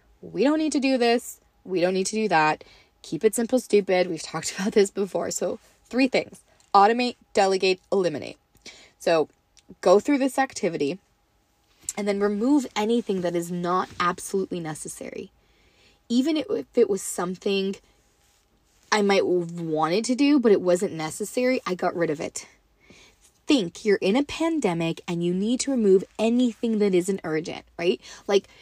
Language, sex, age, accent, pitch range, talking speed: English, female, 20-39, American, 175-235 Hz, 160 wpm